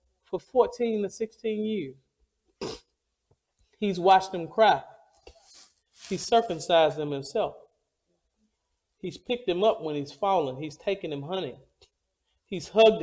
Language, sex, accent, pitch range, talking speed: English, male, American, 180-275 Hz, 120 wpm